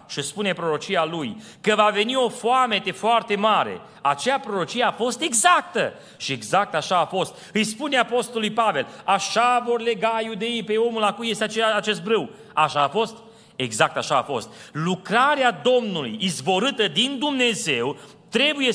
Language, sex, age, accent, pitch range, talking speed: Romanian, male, 30-49, native, 170-230 Hz, 155 wpm